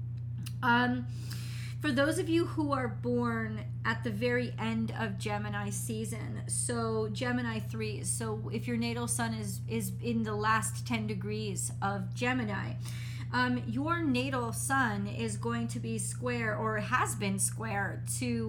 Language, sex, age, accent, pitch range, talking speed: English, female, 30-49, American, 110-120 Hz, 150 wpm